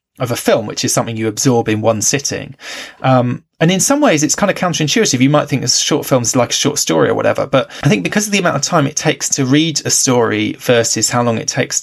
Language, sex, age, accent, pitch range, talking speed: English, male, 20-39, British, 115-150 Hz, 265 wpm